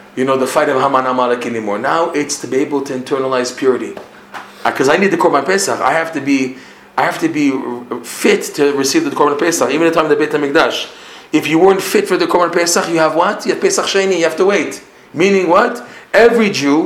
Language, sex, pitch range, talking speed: English, male, 130-180 Hz, 245 wpm